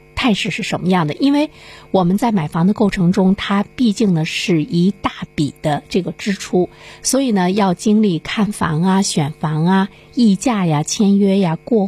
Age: 50-69